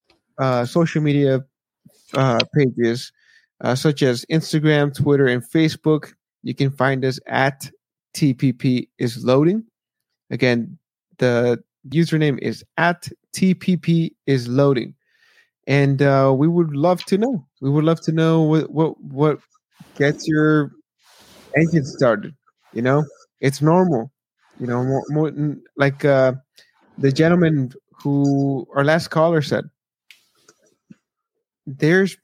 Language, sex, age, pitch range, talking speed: English, male, 30-49, 135-160 Hz, 120 wpm